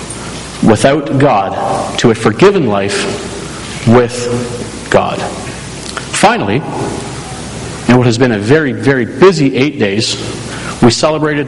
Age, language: 40-59, English